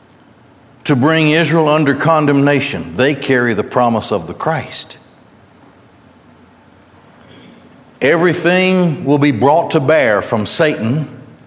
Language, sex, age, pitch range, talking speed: English, male, 60-79, 120-165 Hz, 105 wpm